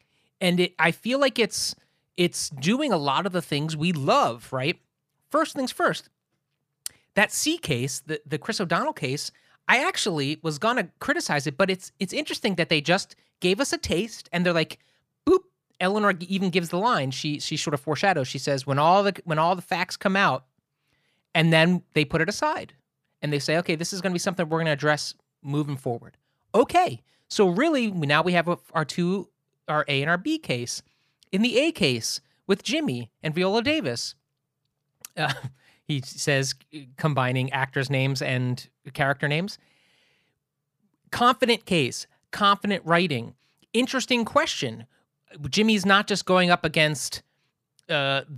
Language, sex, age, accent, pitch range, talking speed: English, male, 30-49, American, 140-195 Hz, 165 wpm